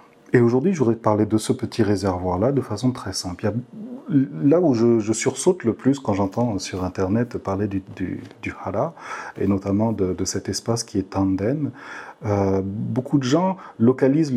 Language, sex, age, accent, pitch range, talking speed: French, male, 40-59, French, 105-135 Hz, 185 wpm